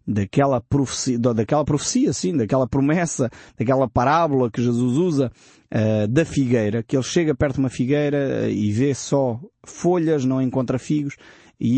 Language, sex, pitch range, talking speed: Portuguese, male, 120-160 Hz, 155 wpm